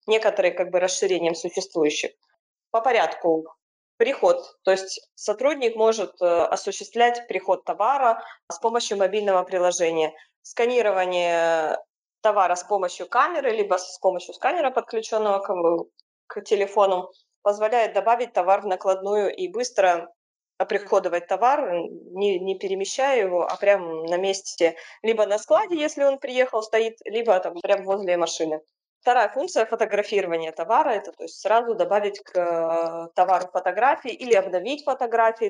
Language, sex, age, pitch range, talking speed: Russian, female, 20-39, 180-225 Hz, 130 wpm